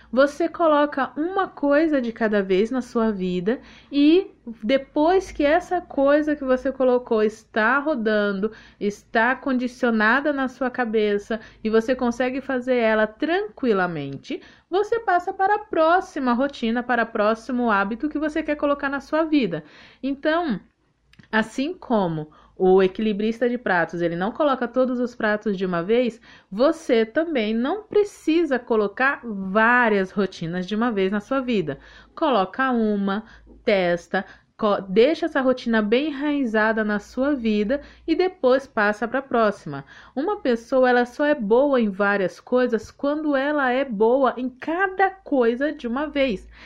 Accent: Brazilian